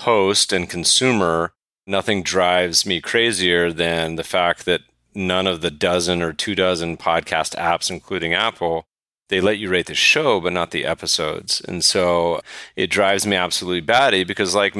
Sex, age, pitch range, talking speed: male, 30-49, 90-110 Hz, 165 wpm